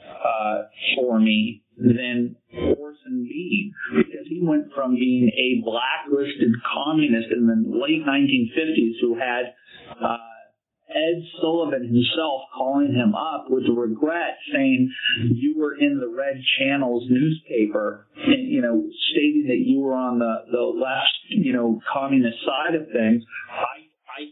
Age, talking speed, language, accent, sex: 50-69, 140 wpm, English, American, male